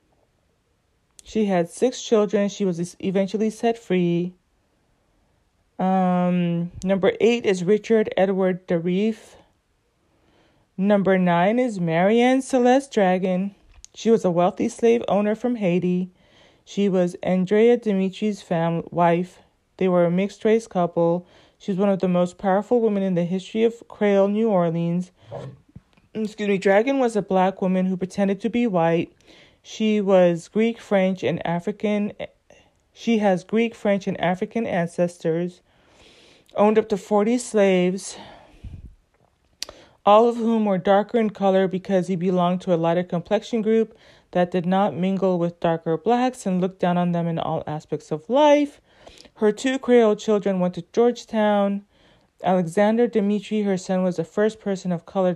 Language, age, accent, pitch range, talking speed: English, 30-49, American, 180-220 Hz, 145 wpm